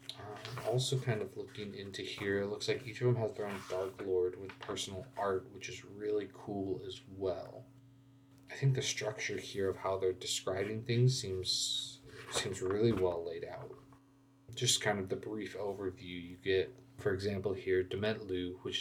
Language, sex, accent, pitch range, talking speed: English, male, American, 100-130 Hz, 180 wpm